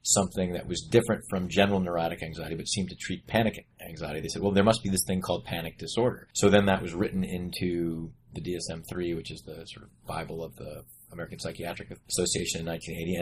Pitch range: 80-95 Hz